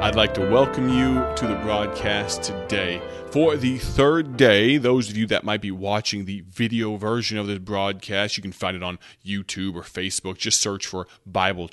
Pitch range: 105-130 Hz